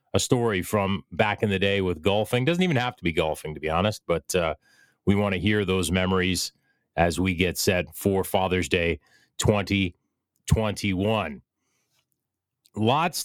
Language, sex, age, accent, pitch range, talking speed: English, male, 30-49, American, 90-110 Hz, 160 wpm